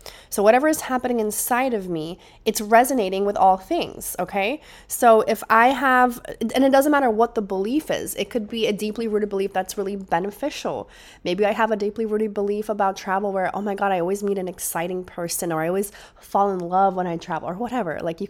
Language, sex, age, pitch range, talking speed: English, female, 20-39, 175-215 Hz, 220 wpm